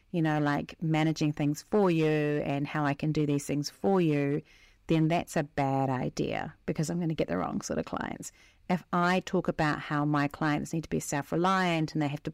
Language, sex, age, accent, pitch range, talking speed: English, female, 40-59, Australian, 150-175 Hz, 225 wpm